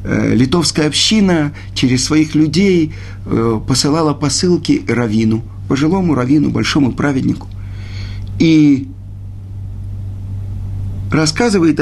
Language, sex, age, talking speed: Russian, male, 50-69, 70 wpm